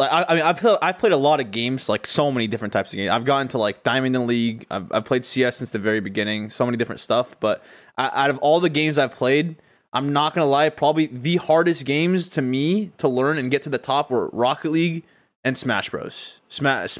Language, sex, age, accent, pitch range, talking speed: English, male, 20-39, American, 125-160 Hz, 250 wpm